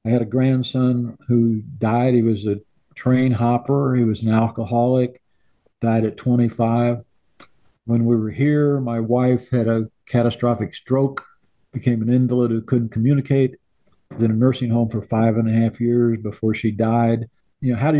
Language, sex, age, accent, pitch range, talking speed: English, male, 50-69, American, 115-130 Hz, 175 wpm